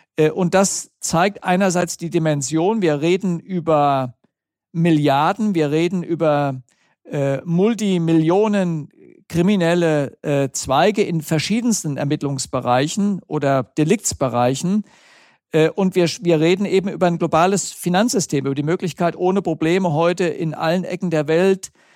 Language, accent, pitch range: German, German, 150-185 Hz